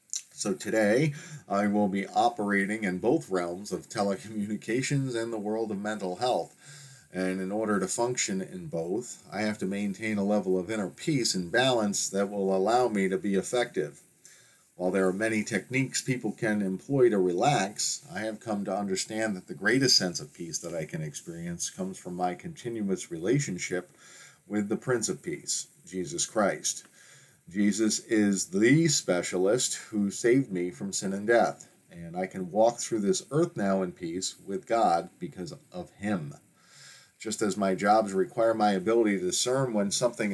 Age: 40-59